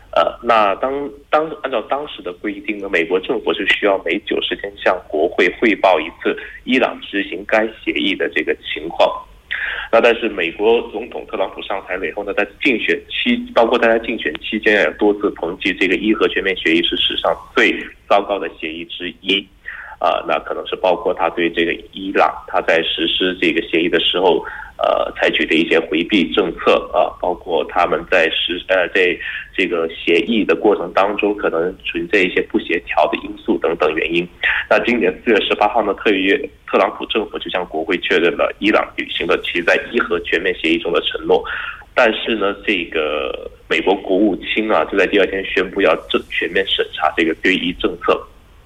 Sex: male